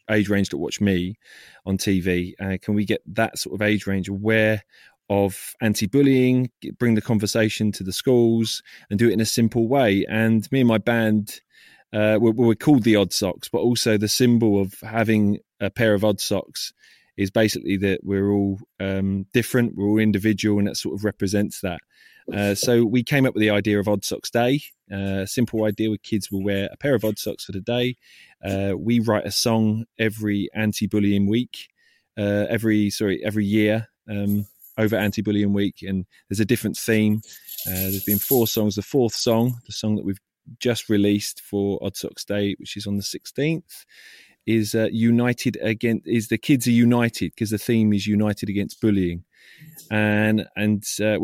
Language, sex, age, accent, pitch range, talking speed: English, male, 20-39, British, 100-115 Hz, 190 wpm